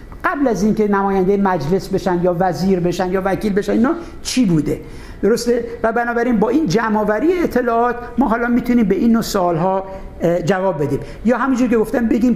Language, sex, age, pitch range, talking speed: Persian, male, 60-79, 190-235 Hz, 170 wpm